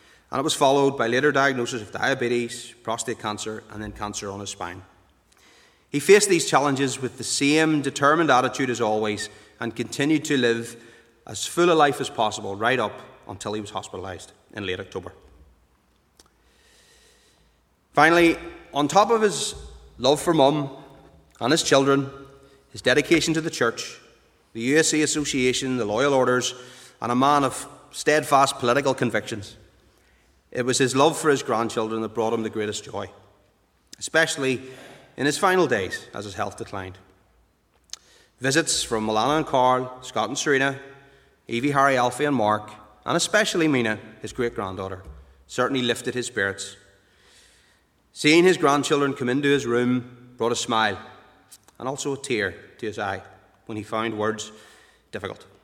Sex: male